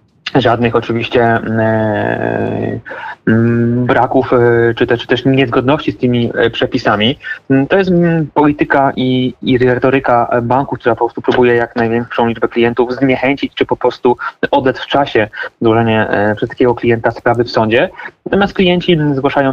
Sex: male